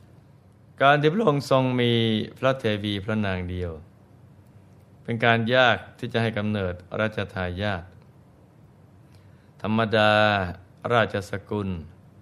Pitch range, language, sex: 100-120 Hz, Thai, male